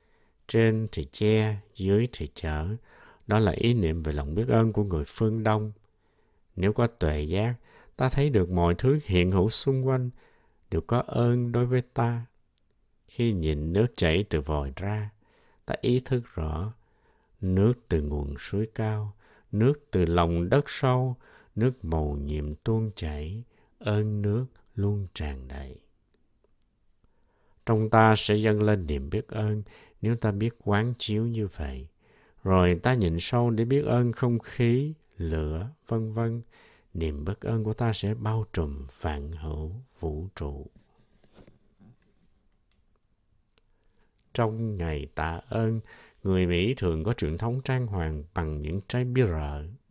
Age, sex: 60-79, male